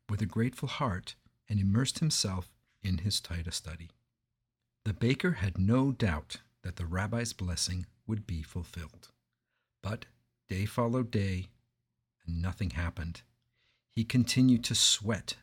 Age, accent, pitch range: 50-69, American, 95-120 Hz